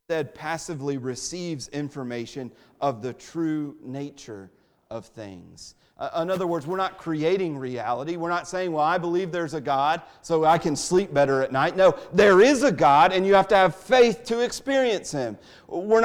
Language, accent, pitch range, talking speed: English, American, 165-205 Hz, 180 wpm